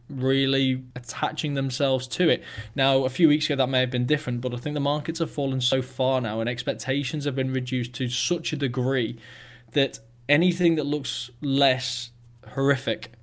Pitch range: 120-140 Hz